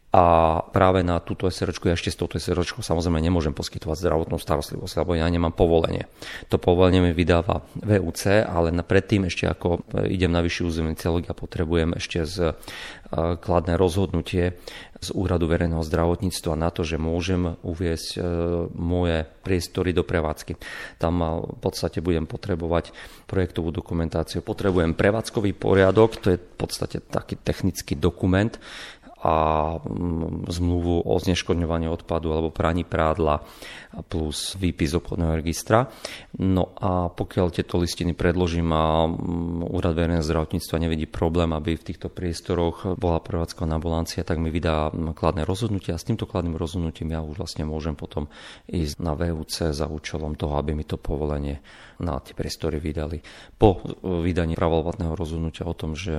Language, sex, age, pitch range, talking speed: Slovak, male, 40-59, 80-90 Hz, 145 wpm